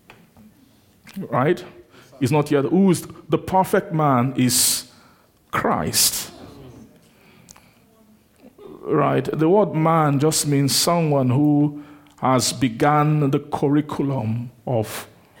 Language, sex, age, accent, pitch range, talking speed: English, male, 50-69, Nigerian, 125-165 Hz, 90 wpm